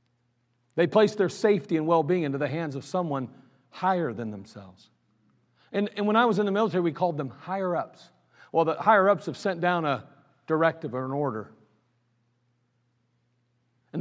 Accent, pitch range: American, 125-195 Hz